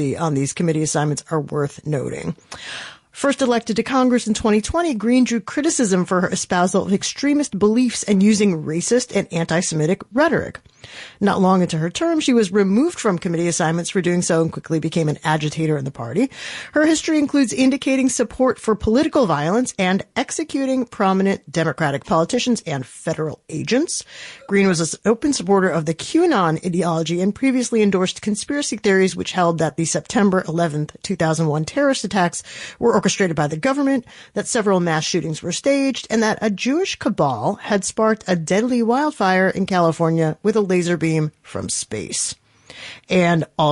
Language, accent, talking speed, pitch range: English, American, 165 wpm, 165-220 Hz